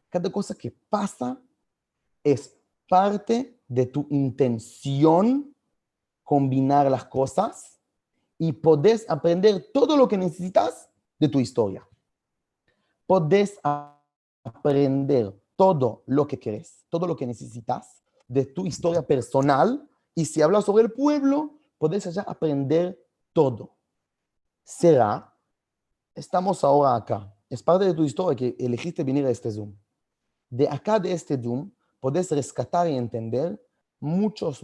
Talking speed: 125 wpm